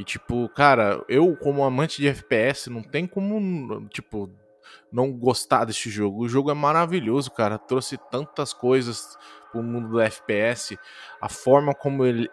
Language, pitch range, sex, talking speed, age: Portuguese, 110-135 Hz, male, 155 wpm, 20-39